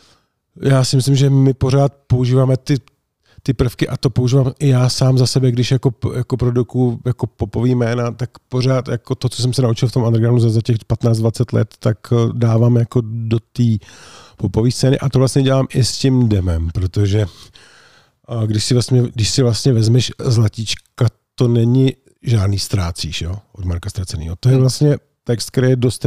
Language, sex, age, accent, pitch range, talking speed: Czech, male, 50-69, native, 105-130 Hz, 185 wpm